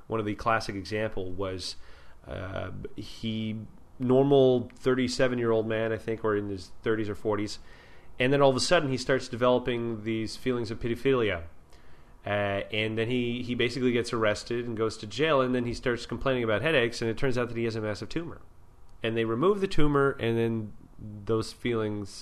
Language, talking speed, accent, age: English, 195 wpm, American, 30-49